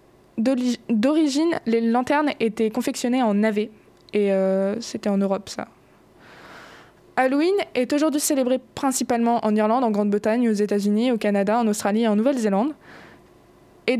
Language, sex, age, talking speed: French, female, 20-39, 145 wpm